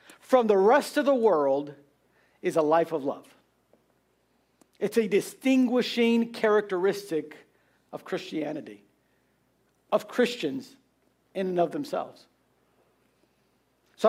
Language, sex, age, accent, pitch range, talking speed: English, male, 50-69, American, 190-235 Hz, 100 wpm